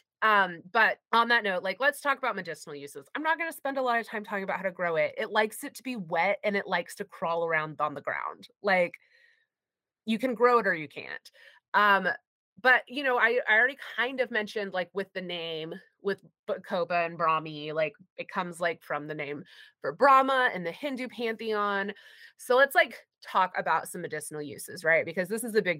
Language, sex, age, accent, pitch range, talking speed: English, female, 20-39, American, 180-255 Hz, 220 wpm